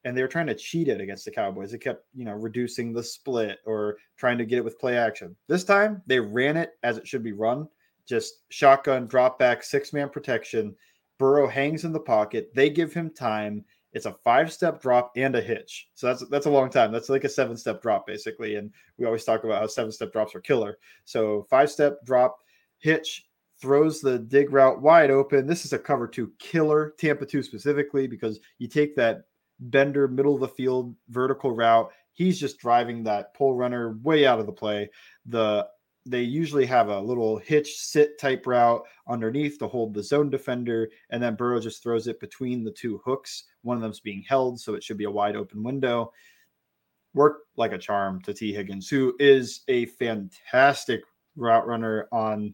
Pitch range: 115-145 Hz